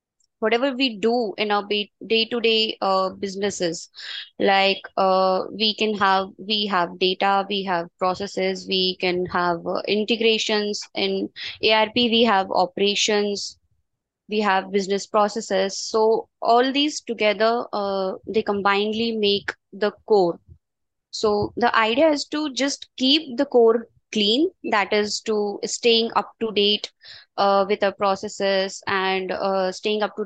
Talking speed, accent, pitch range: 140 wpm, Indian, 195-225 Hz